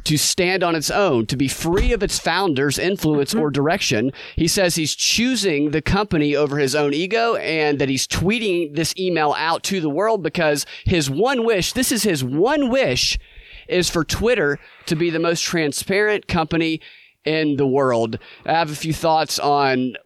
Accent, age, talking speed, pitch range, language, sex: American, 30-49, 185 wpm, 135-175 Hz, English, male